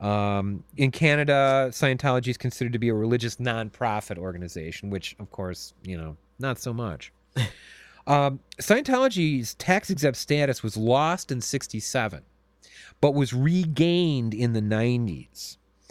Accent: American